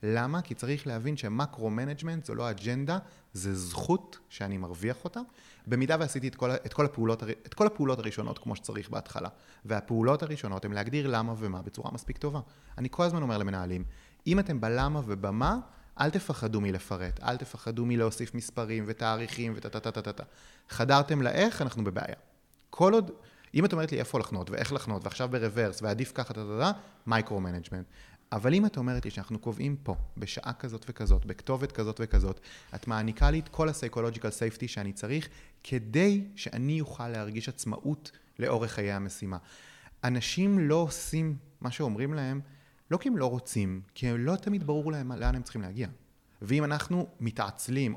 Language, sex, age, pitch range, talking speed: Hebrew, male, 30-49, 110-145 Hz, 155 wpm